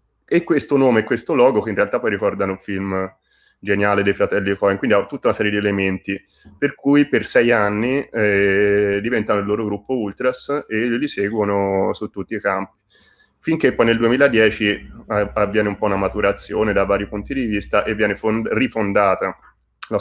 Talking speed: 185 wpm